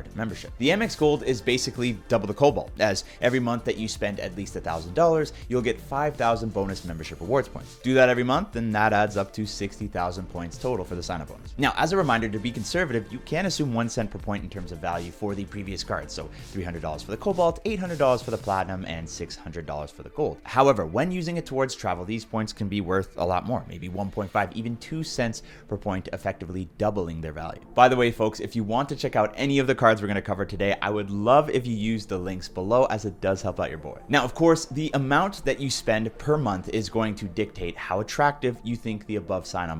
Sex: male